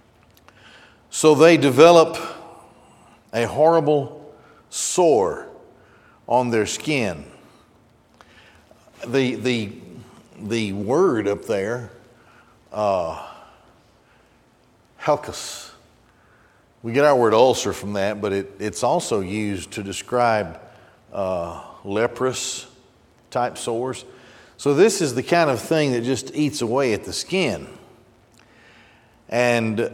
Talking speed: 100 wpm